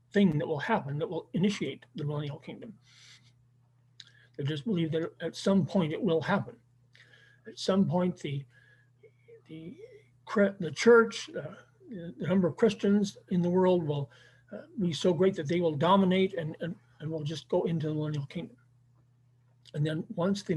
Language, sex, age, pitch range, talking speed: English, male, 50-69, 125-180 Hz, 170 wpm